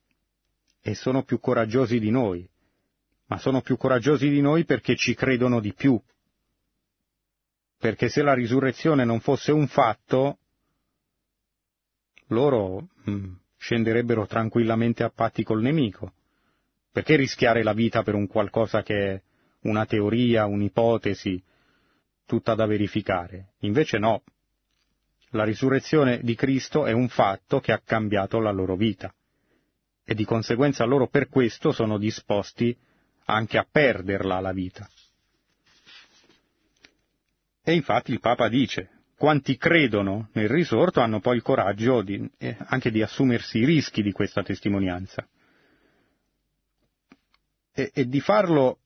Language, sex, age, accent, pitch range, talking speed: Italian, male, 30-49, native, 105-130 Hz, 125 wpm